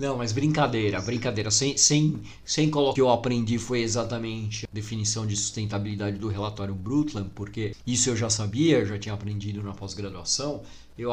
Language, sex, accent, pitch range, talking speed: Portuguese, male, Brazilian, 105-135 Hz, 180 wpm